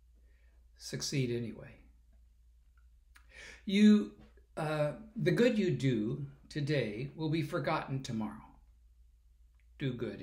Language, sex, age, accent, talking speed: English, male, 60-79, American, 90 wpm